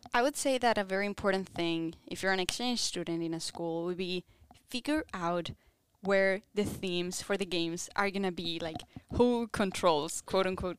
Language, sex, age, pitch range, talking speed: English, female, 10-29, 175-230 Hz, 195 wpm